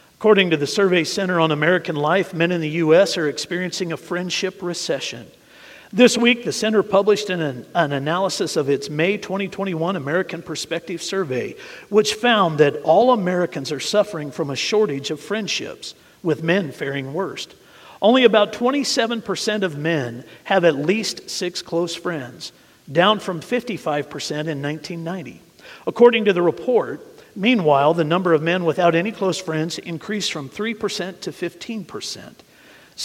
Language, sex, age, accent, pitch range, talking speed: English, male, 50-69, American, 155-205 Hz, 145 wpm